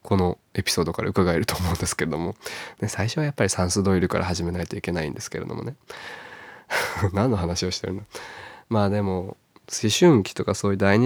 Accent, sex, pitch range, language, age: native, male, 95-115 Hz, Japanese, 20-39